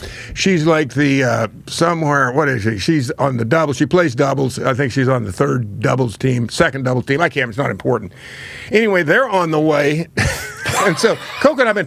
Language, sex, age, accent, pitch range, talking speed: English, male, 60-79, American, 130-170 Hz, 210 wpm